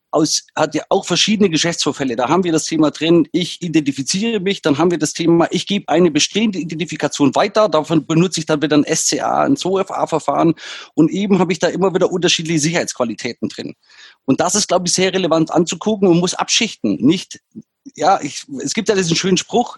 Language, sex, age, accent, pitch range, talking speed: German, male, 30-49, German, 150-190 Hz, 200 wpm